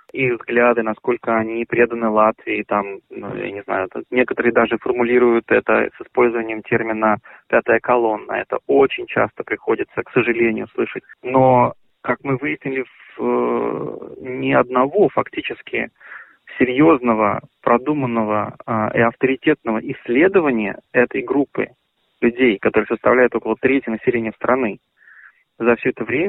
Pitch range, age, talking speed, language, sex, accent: 115-135 Hz, 20-39, 125 wpm, Russian, male, native